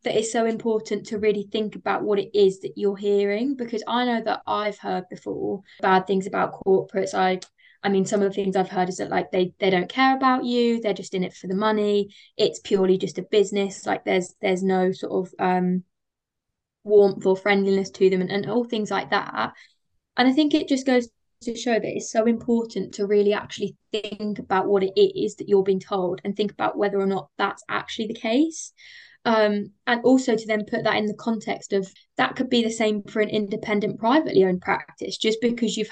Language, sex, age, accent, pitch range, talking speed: English, female, 20-39, British, 195-225 Hz, 220 wpm